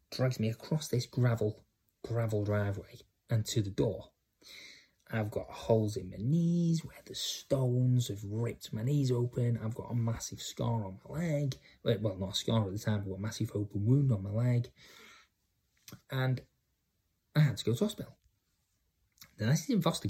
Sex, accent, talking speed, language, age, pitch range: male, British, 180 wpm, English, 20-39, 100-120 Hz